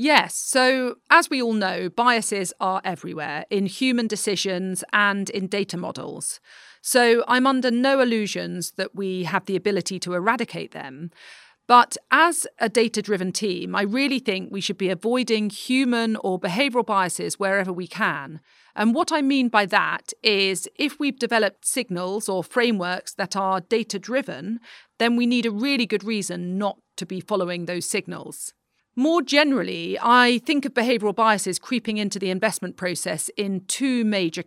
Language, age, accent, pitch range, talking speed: English, 40-59, British, 185-240 Hz, 160 wpm